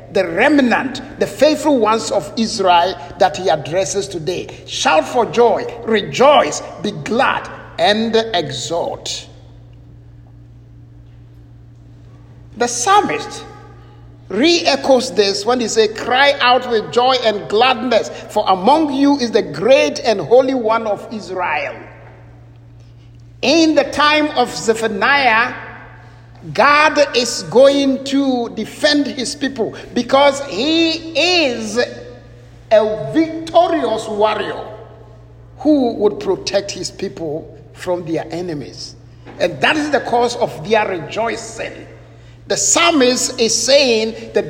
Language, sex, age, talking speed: English, male, 60-79, 110 wpm